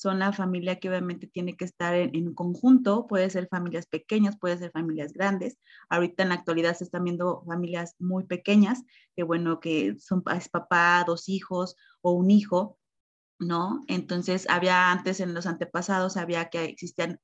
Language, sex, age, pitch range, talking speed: Spanish, female, 30-49, 175-200 Hz, 175 wpm